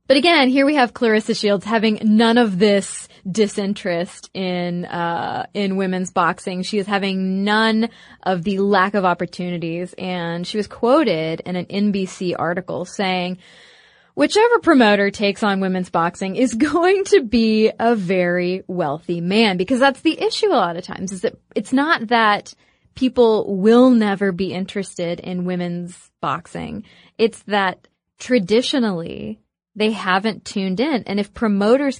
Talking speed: 150 wpm